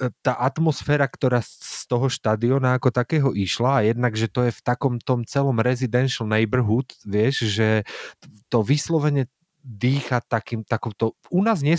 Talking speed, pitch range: 155 wpm, 105-135 Hz